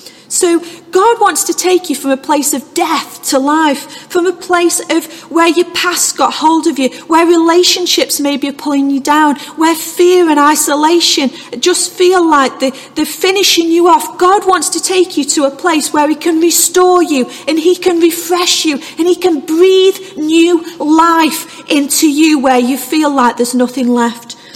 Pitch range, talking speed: 275-340 Hz, 185 wpm